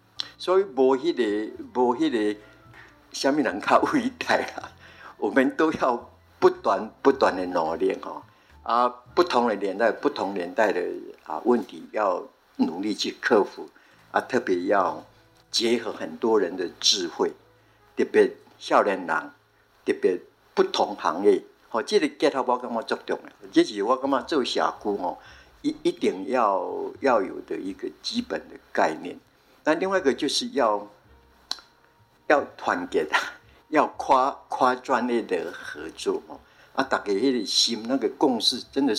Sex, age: male, 60-79